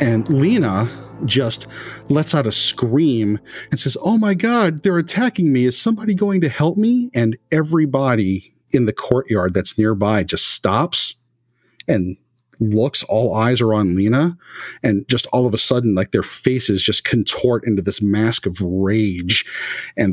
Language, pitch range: English, 105-135 Hz